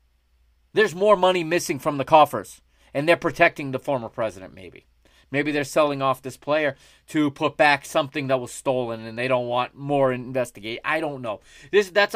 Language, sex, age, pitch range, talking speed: English, male, 30-49, 120-165 Hz, 190 wpm